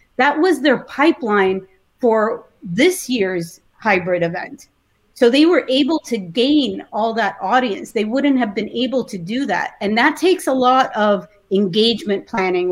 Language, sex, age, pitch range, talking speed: English, female, 30-49, 190-250 Hz, 160 wpm